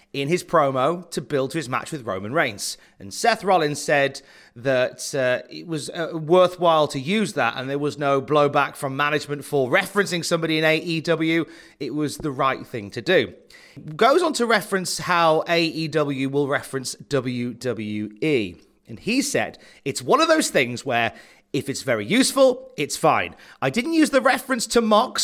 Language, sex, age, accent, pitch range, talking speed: English, male, 30-49, British, 140-205 Hz, 175 wpm